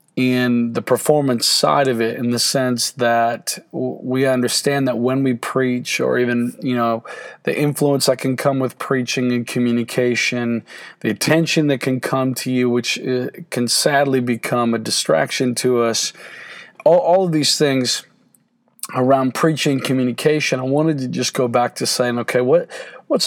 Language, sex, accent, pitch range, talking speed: English, male, American, 125-150 Hz, 170 wpm